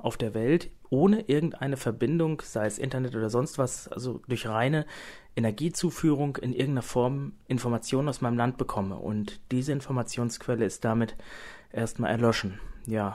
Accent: German